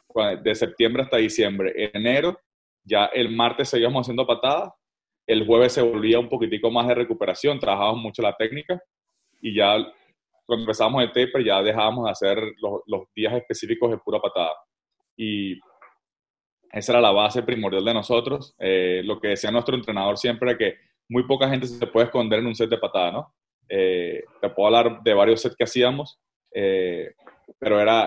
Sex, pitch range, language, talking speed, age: male, 115-130 Hz, English, 175 wpm, 20-39